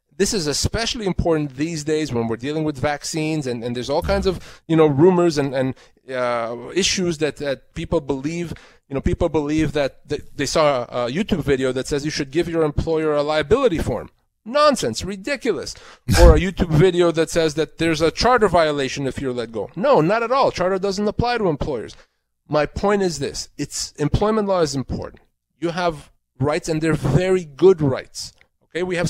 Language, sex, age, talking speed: English, male, 30-49, 195 wpm